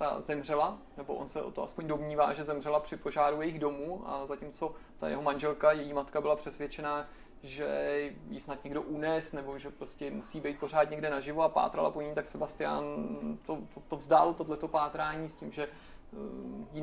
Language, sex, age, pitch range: Czech, male, 20-39, 145-165 Hz